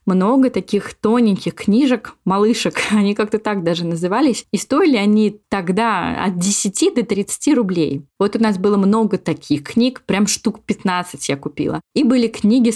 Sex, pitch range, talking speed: female, 185-225 Hz, 160 wpm